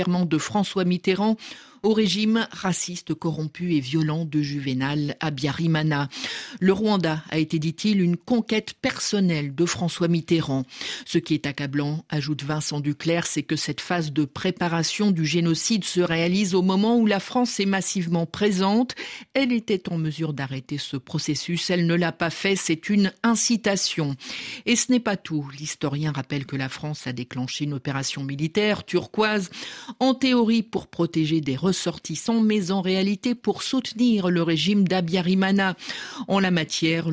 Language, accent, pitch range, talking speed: French, French, 155-205 Hz, 160 wpm